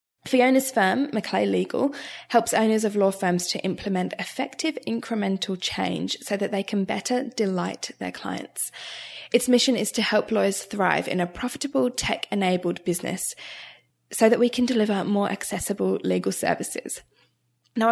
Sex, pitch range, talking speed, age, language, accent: female, 185-230 Hz, 150 wpm, 10-29, English, British